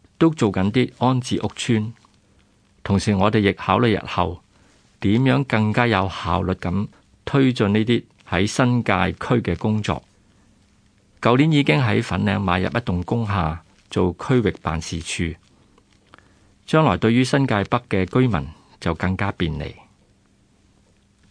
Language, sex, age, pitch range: Chinese, male, 50-69, 95-115 Hz